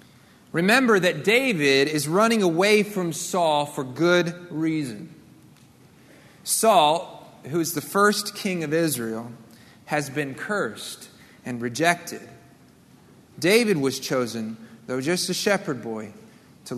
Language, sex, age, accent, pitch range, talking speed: English, male, 30-49, American, 150-200 Hz, 120 wpm